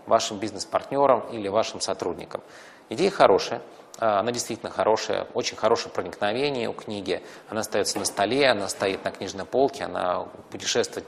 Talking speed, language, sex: 140 wpm, Russian, male